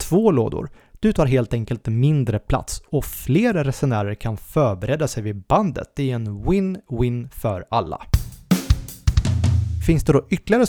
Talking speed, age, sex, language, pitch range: 145 wpm, 30-49, male, Swedish, 115-150 Hz